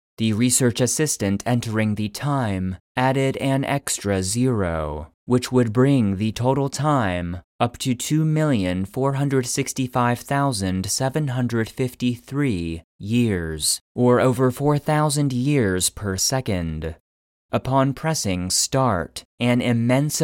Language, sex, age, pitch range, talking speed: English, male, 30-49, 95-130 Hz, 90 wpm